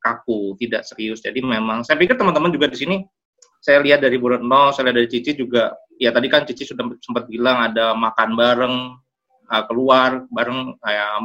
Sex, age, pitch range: male, 20-39, 115-150 Hz